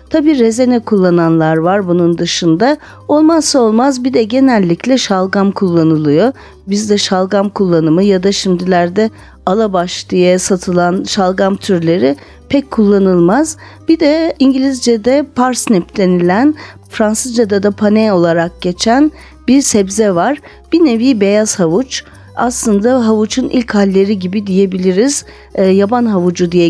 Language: Turkish